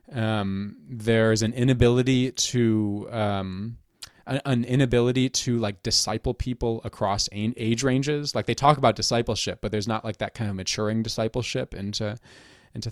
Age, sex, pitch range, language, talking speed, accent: 20-39, male, 100-120 Hz, English, 150 wpm, American